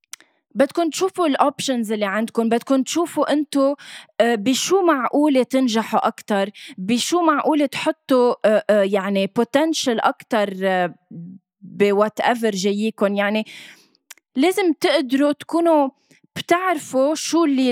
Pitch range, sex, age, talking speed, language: 200-265 Hz, female, 20-39, 95 wpm, Arabic